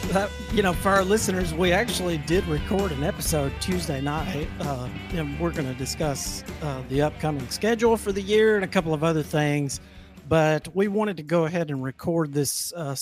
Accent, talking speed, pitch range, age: American, 200 wpm, 140-170 Hz, 50-69